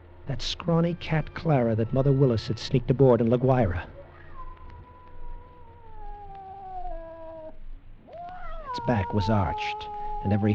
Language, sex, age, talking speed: English, male, 50-69, 110 wpm